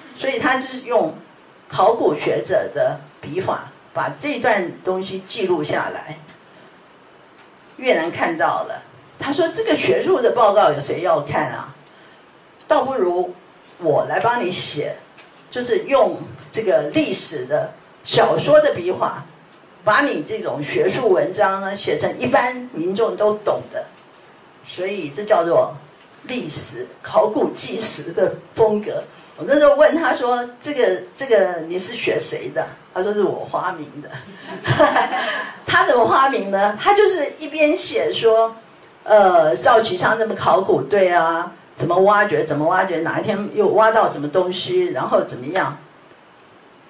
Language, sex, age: Chinese, female, 50-69